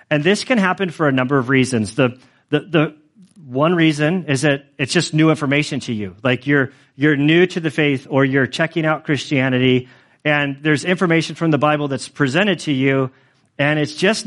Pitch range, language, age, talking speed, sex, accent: 135-165 Hz, English, 40-59, 200 wpm, male, American